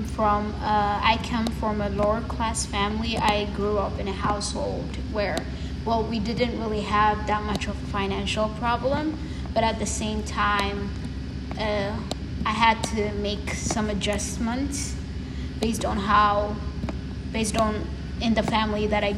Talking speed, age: 155 wpm, 20-39